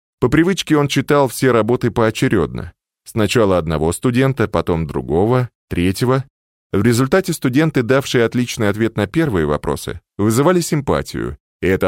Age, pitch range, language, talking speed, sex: 20-39, 95-135 Hz, Russian, 130 wpm, male